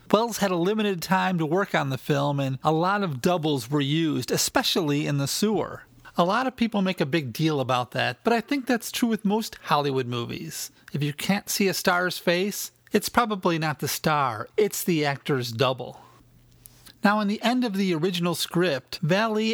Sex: male